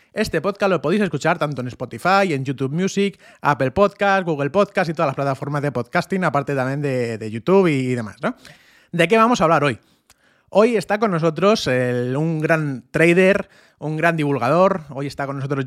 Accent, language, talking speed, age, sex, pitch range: Spanish, Spanish, 190 wpm, 30-49, male, 135-190 Hz